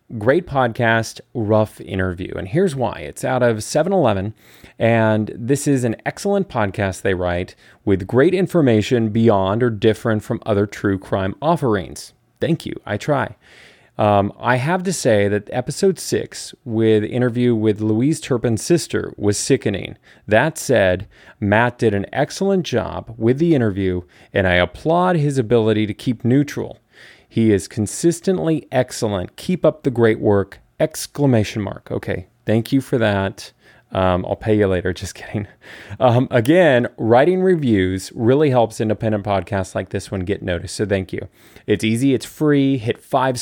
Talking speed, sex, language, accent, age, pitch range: 155 wpm, male, English, American, 30-49, 100-130 Hz